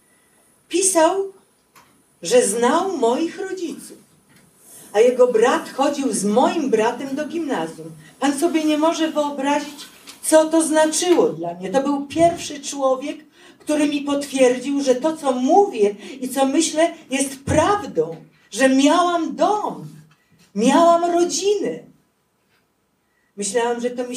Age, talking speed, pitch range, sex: 50-69, 120 wpm, 185-290 Hz, female